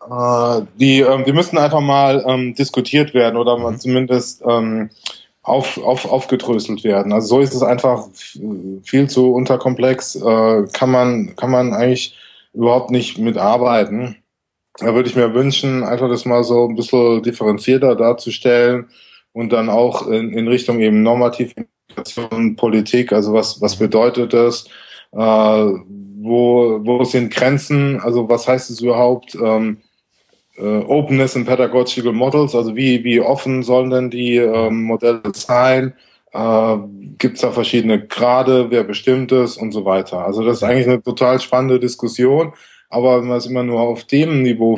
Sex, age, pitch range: male, 20-39, 115-125 Hz